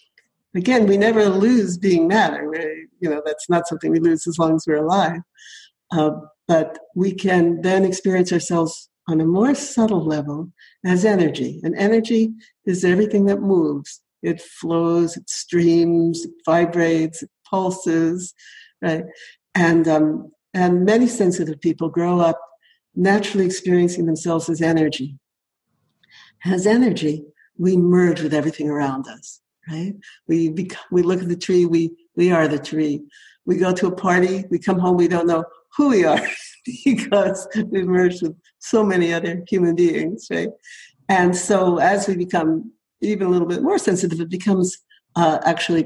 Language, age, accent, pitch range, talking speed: English, 60-79, American, 160-190 Hz, 160 wpm